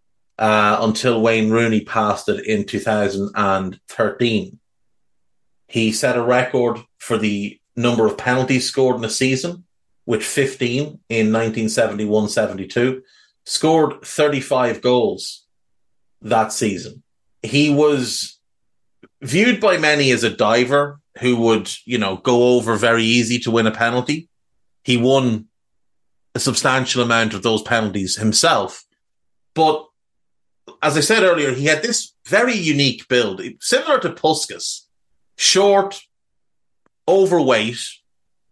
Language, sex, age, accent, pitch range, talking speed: English, male, 30-49, Irish, 115-155 Hz, 115 wpm